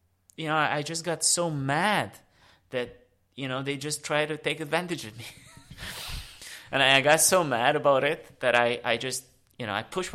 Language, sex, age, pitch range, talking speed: English, male, 20-39, 100-135 Hz, 195 wpm